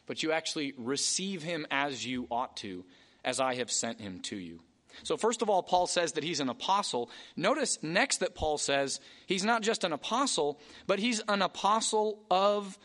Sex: male